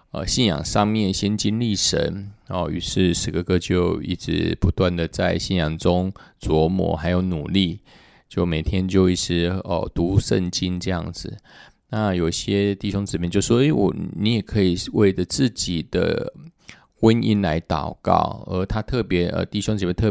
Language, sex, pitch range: Chinese, male, 85-100 Hz